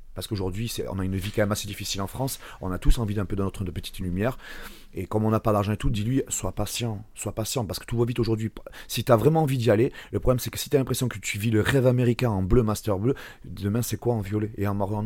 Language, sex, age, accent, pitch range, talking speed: French, male, 30-49, French, 100-125 Hz, 305 wpm